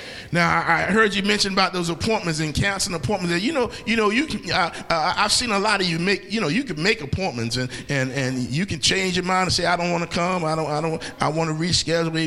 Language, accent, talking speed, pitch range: English, American, 270 wpm, 140-190 Hz